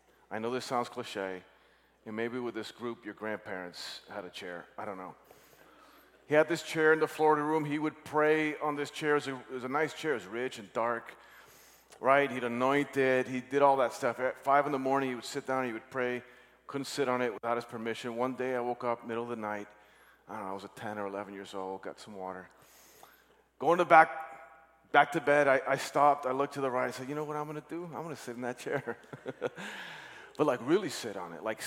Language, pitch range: English, 110-145 Hz